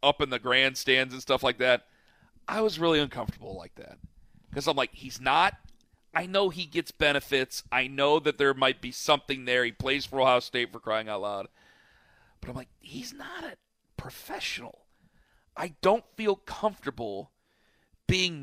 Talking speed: 175 wpm